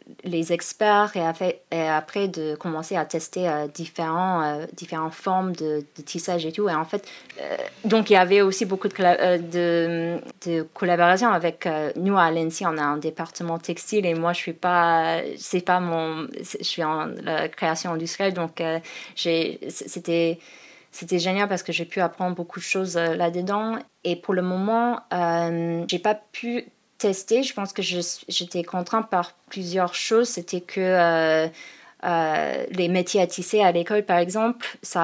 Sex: female